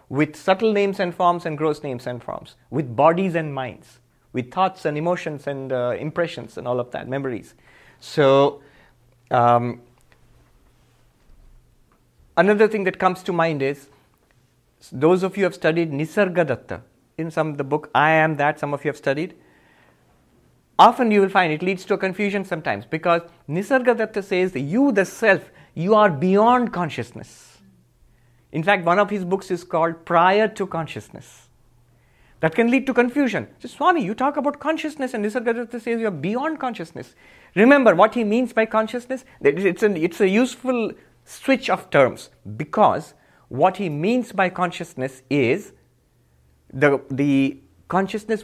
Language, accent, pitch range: English, Indian, 135-210 Hz